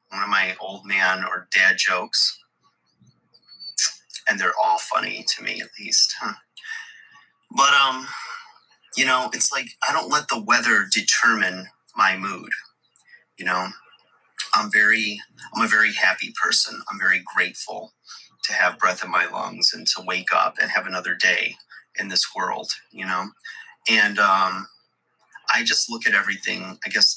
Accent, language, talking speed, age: American, English, 155 wpm, 30-49